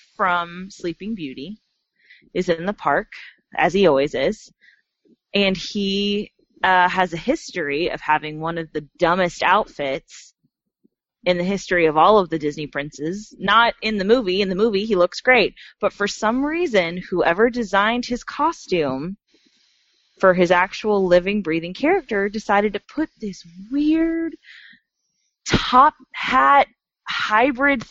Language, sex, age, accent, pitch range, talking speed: English, female, 20-39, American, 180-255 Hz, 140 wpm